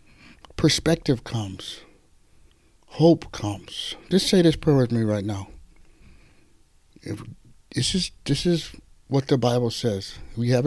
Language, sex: English, male